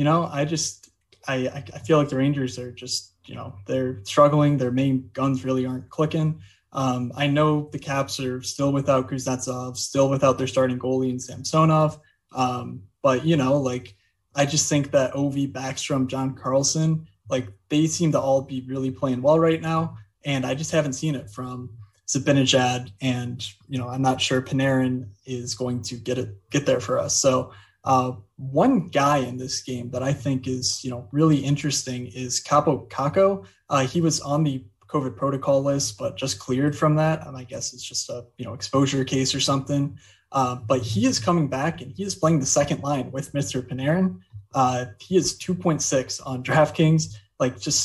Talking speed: 190 wpm